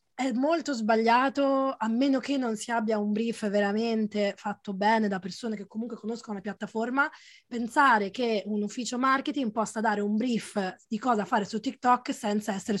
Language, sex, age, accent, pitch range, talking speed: Italian, female, 20-39, native, 205-250 Hz, 175 wpm